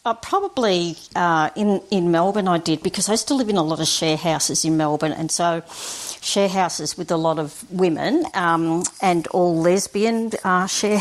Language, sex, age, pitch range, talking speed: English, female, 50-69, 160-195 Hz, 195 wpm